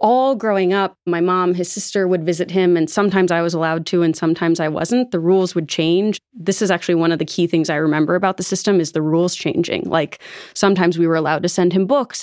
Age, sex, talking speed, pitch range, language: 30-49, female, 245 wpm, 165-200 Hz, English